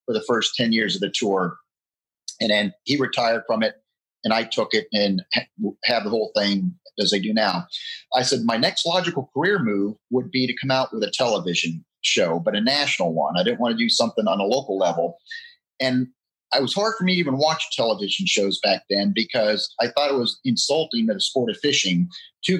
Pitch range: 115-175 Hz